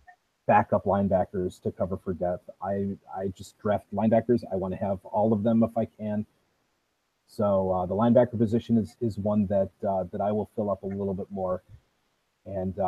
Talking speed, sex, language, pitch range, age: 190 wpm, male, English, 100-125 Hz, 30-49